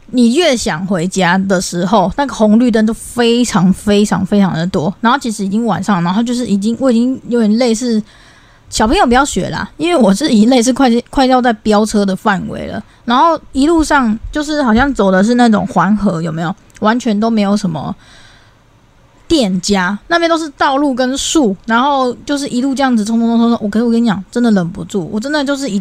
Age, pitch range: 20-39, 200-255 Hz